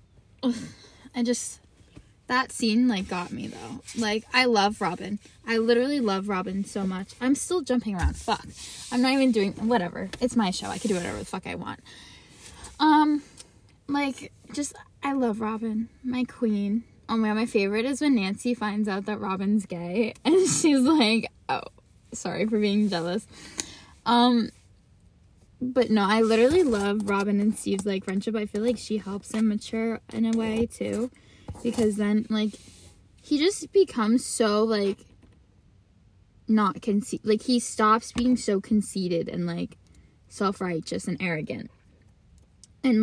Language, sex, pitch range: English, female, 200-245 Hz